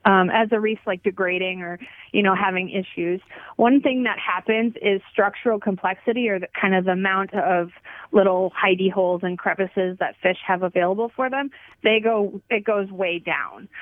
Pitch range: 190-225 Hz